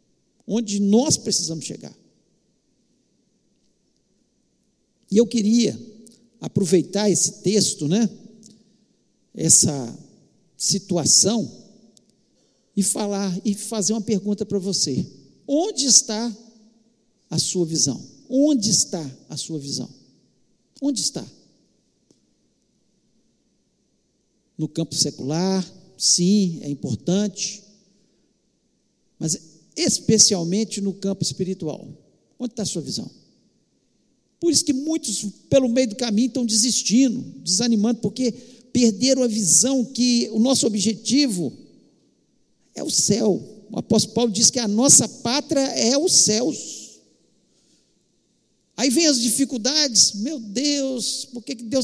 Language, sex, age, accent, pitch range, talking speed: Portuguese, male, 60-79, Brazilian, 200-250 Hz, 105 wpm